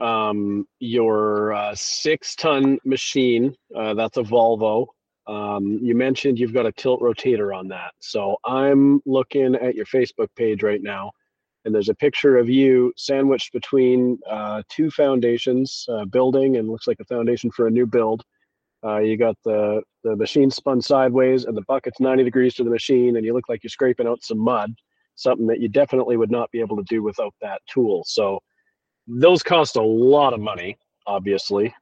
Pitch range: 105-135 Hz